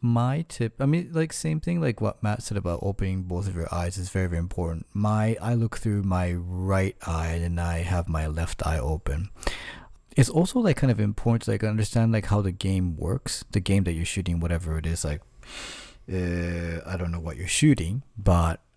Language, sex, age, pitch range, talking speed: English, male, 30-49, 85-110 Hz, 210 wpm